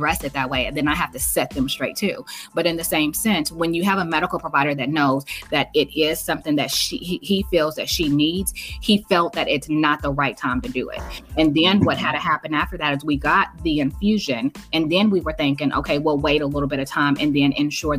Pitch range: 145-175 Hz